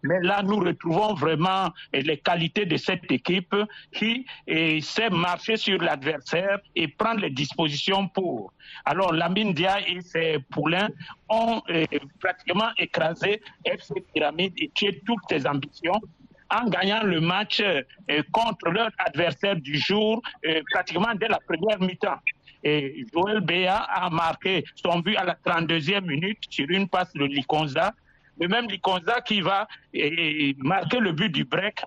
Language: French